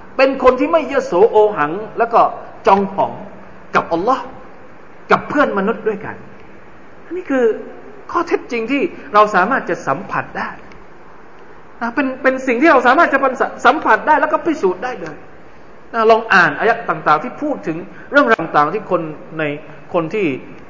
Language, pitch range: Thai, 170-275 Hz